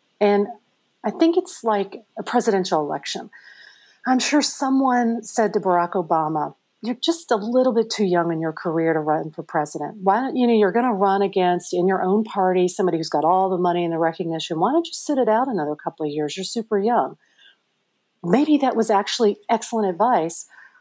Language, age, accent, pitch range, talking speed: English, 40-59, American, 180-235 Hz, 200 wpm